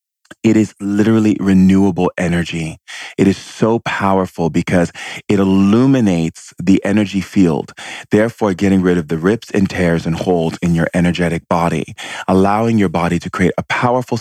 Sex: male